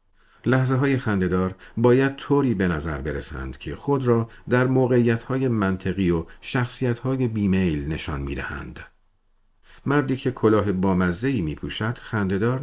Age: 50-69